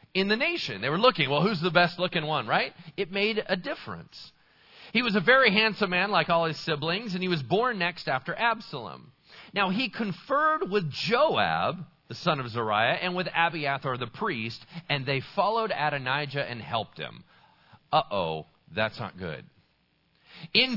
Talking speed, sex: 175 wpm, male